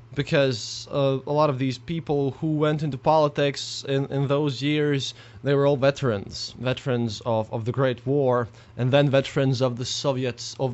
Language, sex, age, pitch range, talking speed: English, male, 20-39, 125-155 Hz, 180 wpm